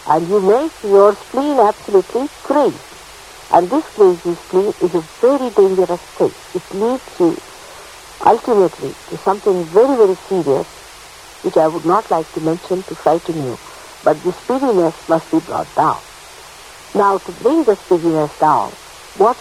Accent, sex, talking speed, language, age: Indian, female, 155 wpm, English, 60-79